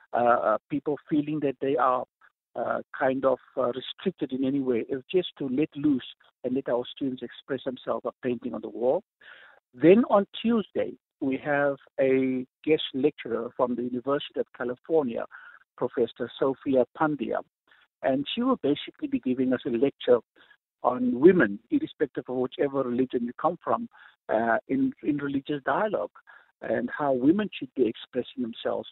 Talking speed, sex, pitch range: 160 wpm, male, 125-170 Hz